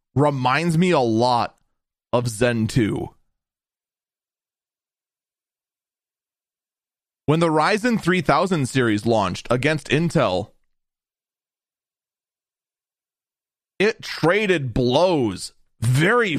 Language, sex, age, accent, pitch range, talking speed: English, male, 30-49, American, 150-200 Hz, 70 wpm